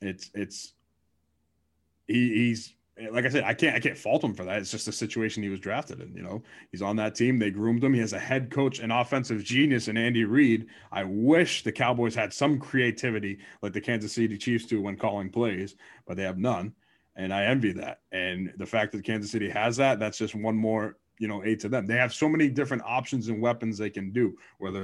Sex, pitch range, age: male, 105-130 Hz, 30-49